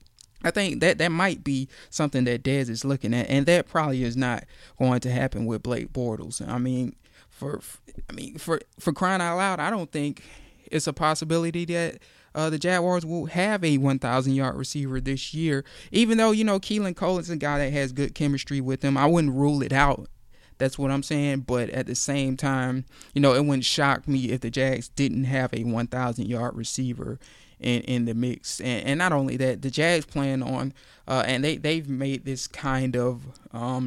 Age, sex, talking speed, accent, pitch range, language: 20-39, male, 205 wpm, American, 130-145 Hz, English